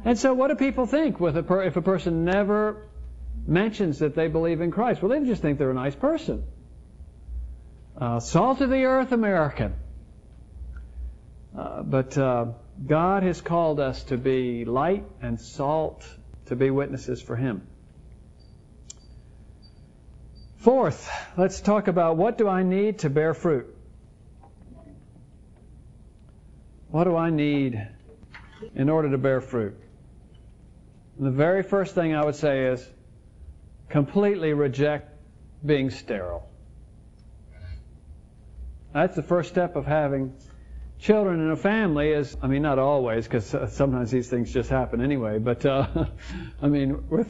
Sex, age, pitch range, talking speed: male, 50-69, 120-180 Hz, 135 wpm